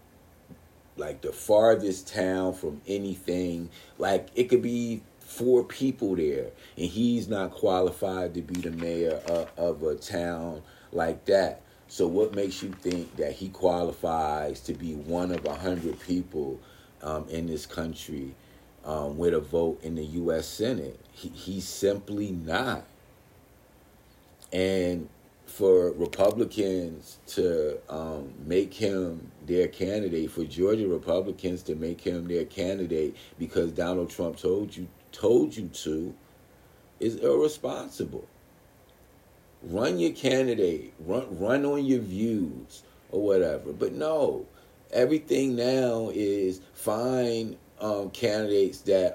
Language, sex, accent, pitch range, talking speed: English, male, American, 85-115 Hz, 125 wpm